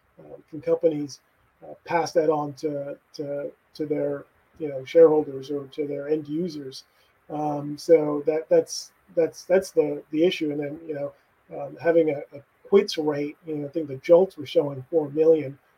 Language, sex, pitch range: English, male, 150-170 Hz